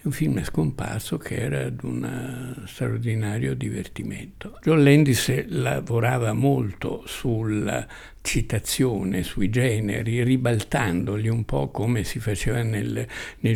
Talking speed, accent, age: 110 wpm, native, 60-79